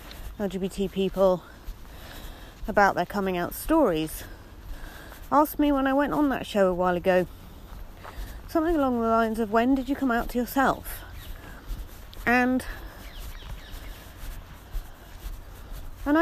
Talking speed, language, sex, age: 120 wpm, English, female, 40-59